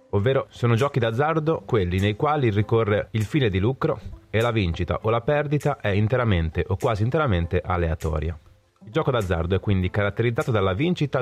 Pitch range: 90-120 Hz